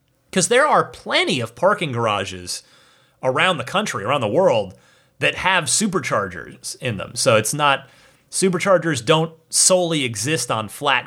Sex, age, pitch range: male, 30-49, 125-180 Hz